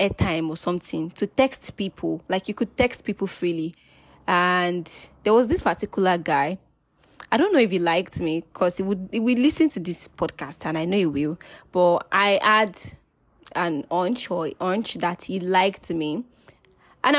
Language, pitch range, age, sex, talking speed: English, 175-245 Hz, 10-29, female, 180 wpm